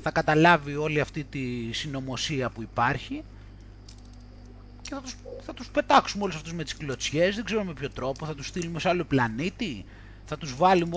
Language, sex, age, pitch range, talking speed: Greek, male, 30-49, 110-175 Hz, 180 wpm